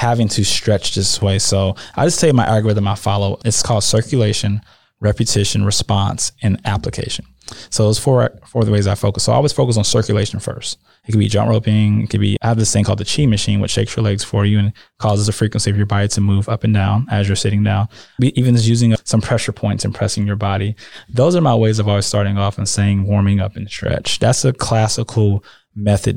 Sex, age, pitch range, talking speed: male, 20-39, 105-120 Hz, 235 wpm